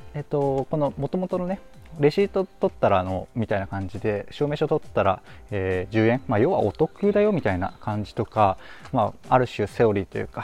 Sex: male